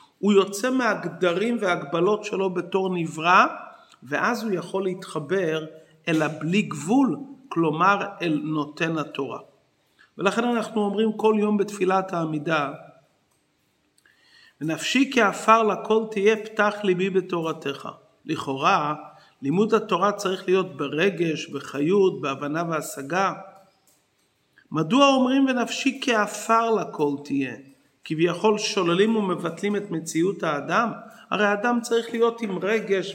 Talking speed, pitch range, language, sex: 105 wpm, 175-225 Hz, Hebrew, male